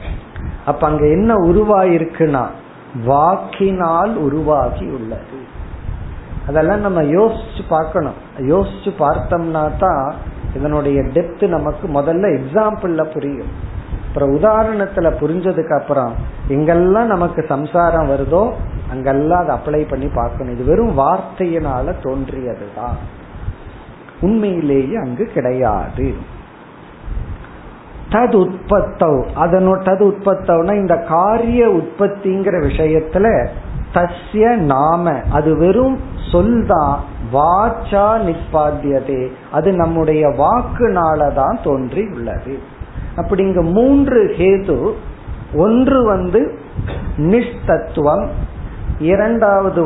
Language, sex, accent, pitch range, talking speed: Tamil, male, native, 140-200 Hz, 55 wpm